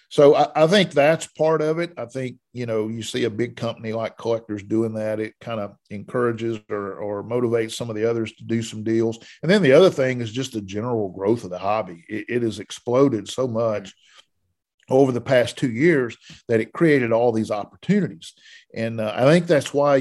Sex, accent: male, American